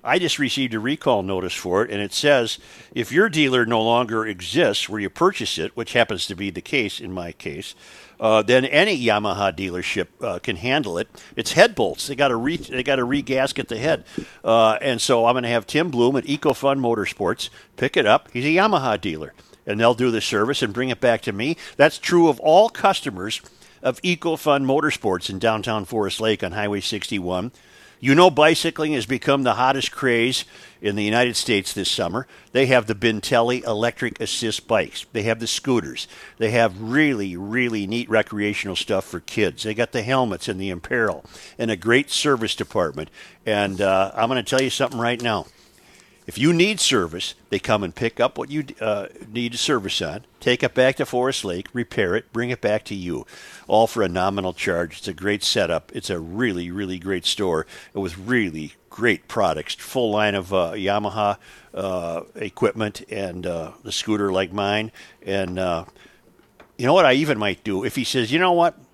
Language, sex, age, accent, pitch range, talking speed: English, male, 50-69, American, 100-130 Hz, 200 wpm